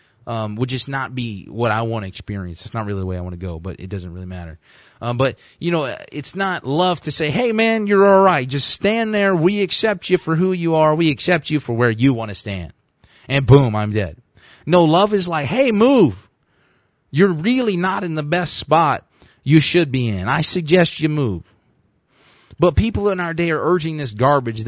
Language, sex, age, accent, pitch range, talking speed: English, male, 30-49, American, 115-175 Hz, 220 wpm